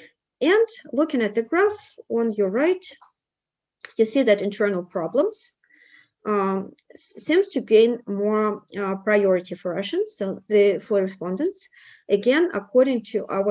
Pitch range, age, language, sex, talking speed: 190-275 Hz, 30-49, English, female, 135 wpm